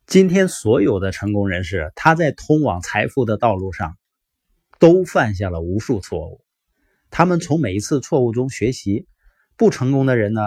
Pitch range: 105-140 Hz